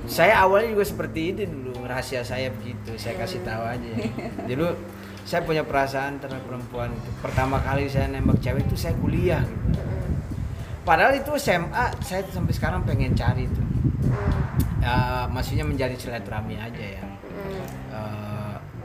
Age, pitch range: 20-39, 115-140 Hz